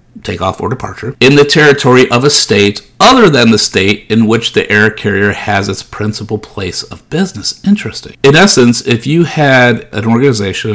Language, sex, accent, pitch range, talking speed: English, male, American, 100-130 Hz, 180 wpm